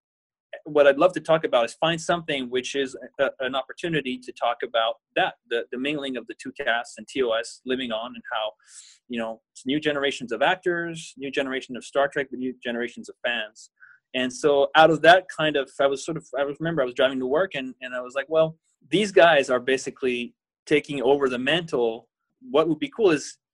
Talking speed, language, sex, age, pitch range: 210 wpm, English, male, 20-39, 135-185 Hz